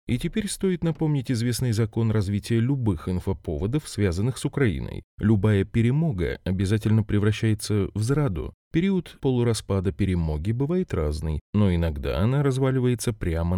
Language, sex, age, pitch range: Russian, male, 30-49, 90-120 Hz